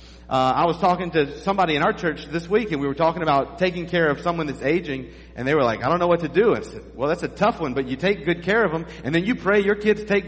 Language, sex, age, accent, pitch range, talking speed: English, male, 40-59, American, 130-185 Hz, 315 wpm